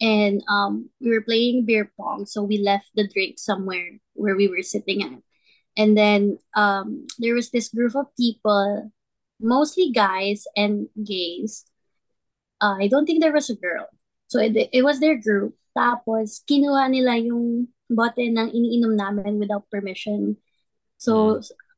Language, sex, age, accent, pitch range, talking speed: Filipino, female, 20-39, native, 205-255 Hz, 155 wpm